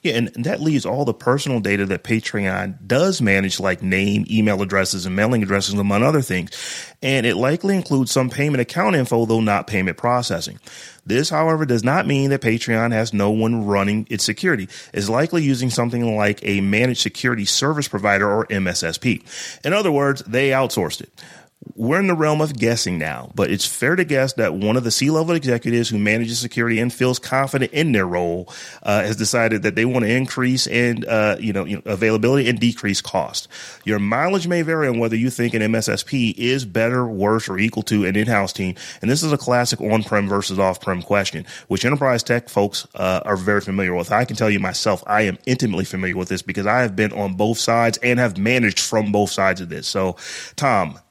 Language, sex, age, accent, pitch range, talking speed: English, male, 30-49, American, 100-125 Hz, 205 wpm